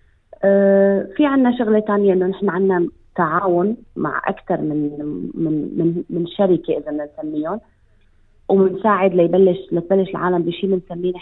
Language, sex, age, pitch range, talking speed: Arabic, female, 30-49, 165-200 Hz, 120 wpm